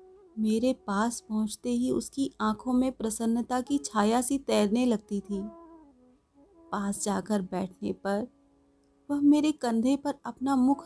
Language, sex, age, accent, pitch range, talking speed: Hindi, female, 30-49, native, 215-290 Hz, 135 wpm